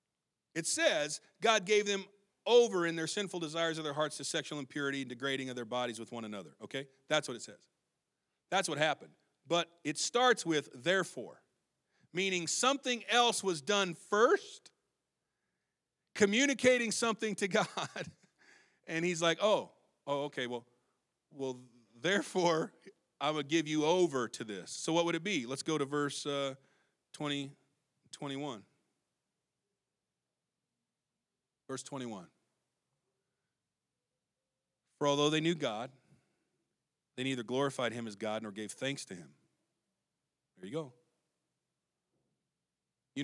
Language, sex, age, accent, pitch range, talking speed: English, male, 40-59, American, 135-190 Hz, 135 wpm